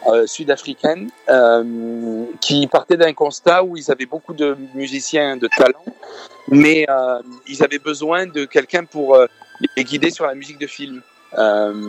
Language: Arabic